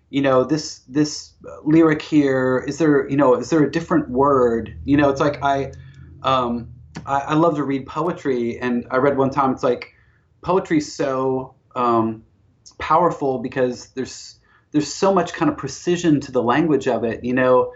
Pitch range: 120-150 Hz